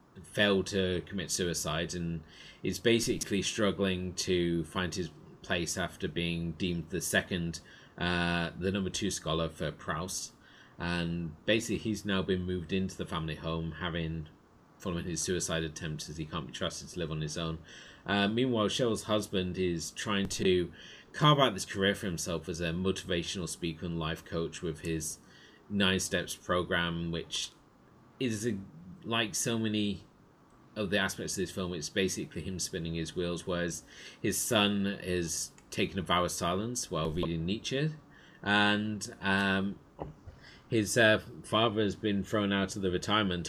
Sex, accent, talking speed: male, British, 160 wpm